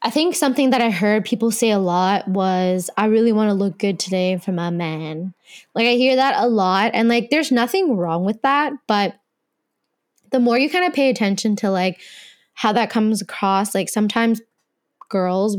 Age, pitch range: 10-29, 190-230 Hz